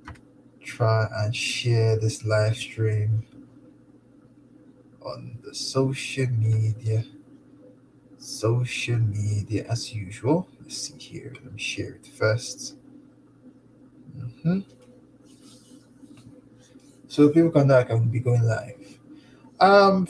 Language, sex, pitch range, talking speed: English, male, 110-135 Hz, 95 wpm